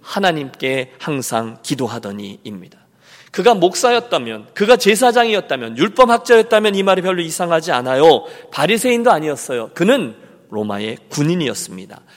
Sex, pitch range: male, 140-205 Hz